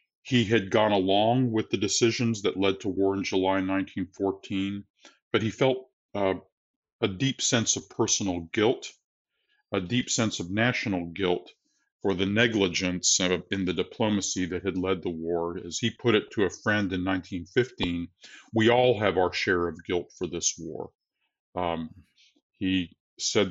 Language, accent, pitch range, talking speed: English, American, 90-110 Hz, 160 wpm